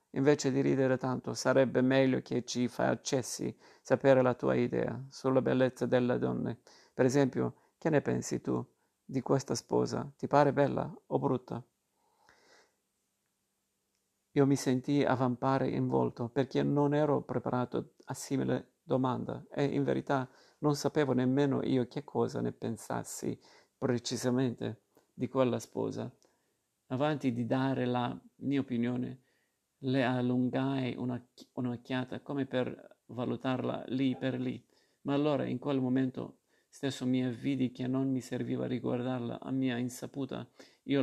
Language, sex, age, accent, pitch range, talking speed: Italian, male, 50-69, native, 120-135 Hz, 135 wpm